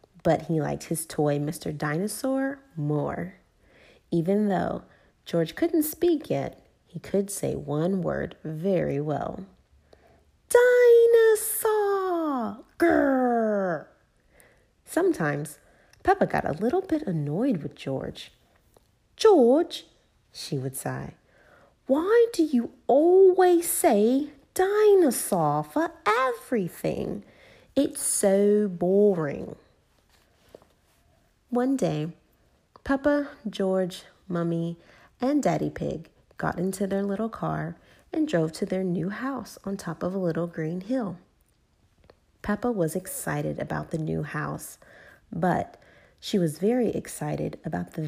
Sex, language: female, English